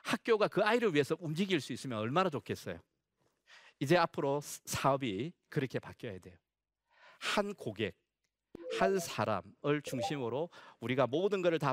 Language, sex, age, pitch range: Korean, male, 40-59, 120-175 Hz